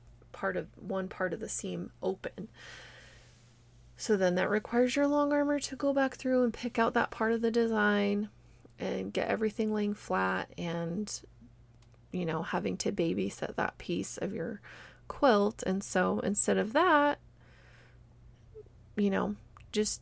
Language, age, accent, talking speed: English, 20-39, American, 155 wpm